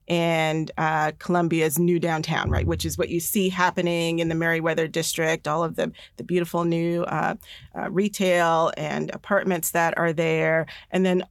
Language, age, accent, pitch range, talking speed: English, 40-59, American, 170-190 Hz, 170 wpm